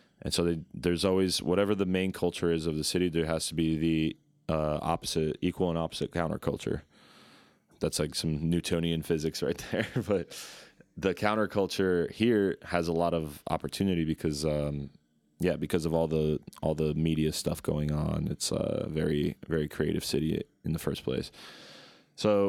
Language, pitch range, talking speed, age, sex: Slovak, 80-90 Hz, 170 wpm, 20-39, male